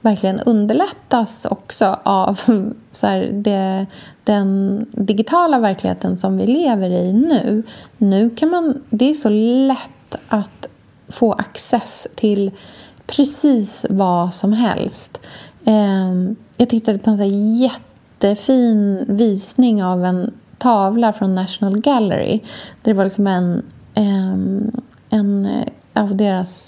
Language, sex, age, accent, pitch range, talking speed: Swedish, female, 30-49, native, 195-235 Hz, 120 wpm